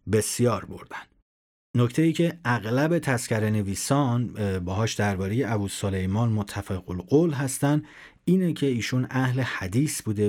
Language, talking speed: Persian, 120 wpm